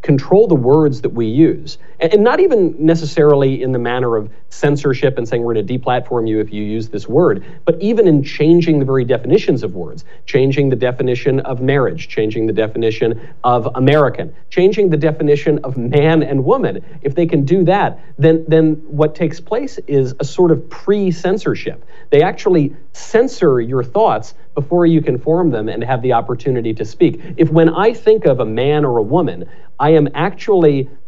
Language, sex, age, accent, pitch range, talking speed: English, male, 40-59, American, 125-160 Hz, 185 wpm